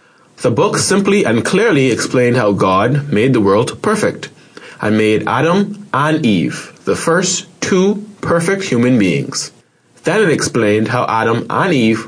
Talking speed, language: 150 wpm, English